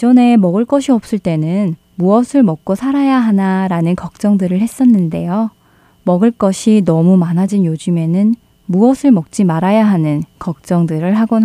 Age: 20-39